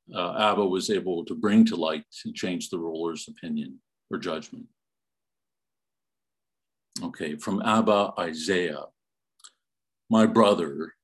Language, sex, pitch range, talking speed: English, male, 105-140 Hz, 115 wpm